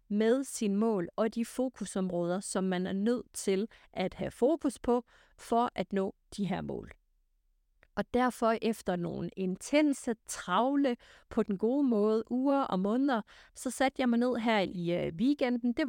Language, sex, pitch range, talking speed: Danish, female, 195-250 Hz, 160 wpm